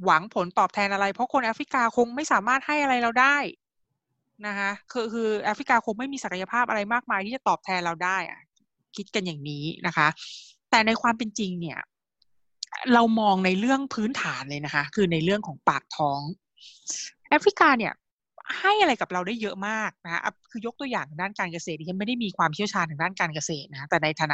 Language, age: Thai, 20-39